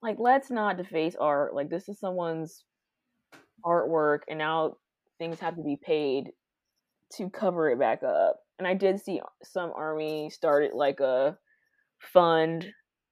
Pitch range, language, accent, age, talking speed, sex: 165-240 Hz, English, American, 20-39, 145 wpm, female